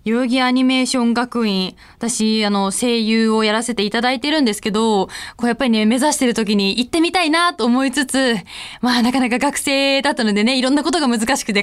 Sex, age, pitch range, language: female, 20-39, 210-315 Hz, Japanese